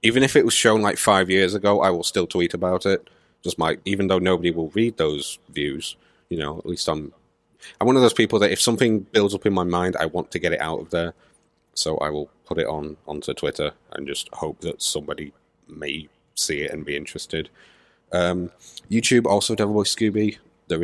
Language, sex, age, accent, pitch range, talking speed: English, male, 30-49, British, 85-105 Hz, 220 wpm